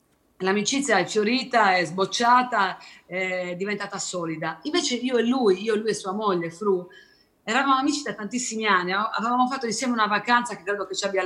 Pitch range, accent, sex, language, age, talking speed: 185-240 Hz, native, female, Italian, 40-59, 180 wpm